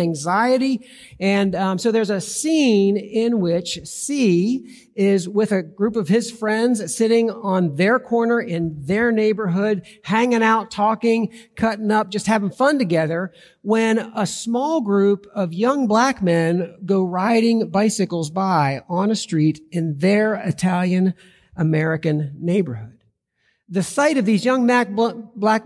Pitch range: 185-230 Hz